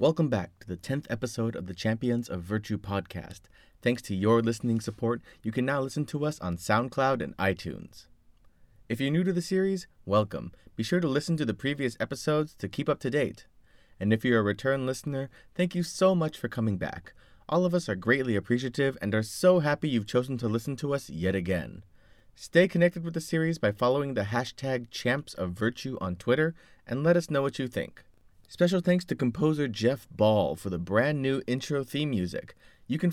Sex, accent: male, American